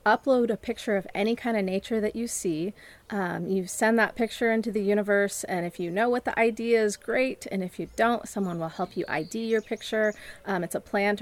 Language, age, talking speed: English, 30-49, 230 wpm